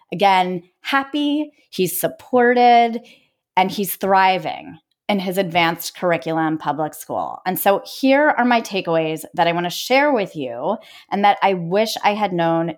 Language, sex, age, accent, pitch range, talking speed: English, female, 30-49, American, 170-225 Hz, 155 wpm